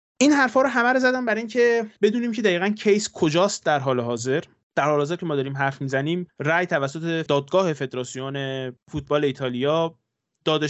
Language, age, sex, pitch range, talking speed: Persian, 20-39, male, 135-180 Hz, 175 wpm